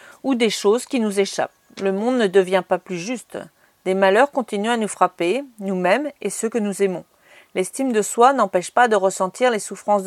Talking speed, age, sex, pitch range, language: 205 wpm, 40-59, female, 200-260 Hz, French